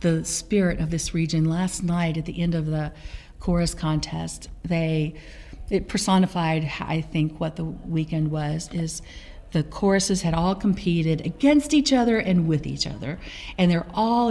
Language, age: English, 50-69